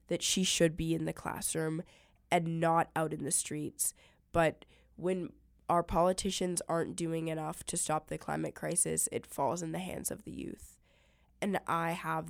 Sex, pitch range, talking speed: female, 155-170 Hz, 175 wpm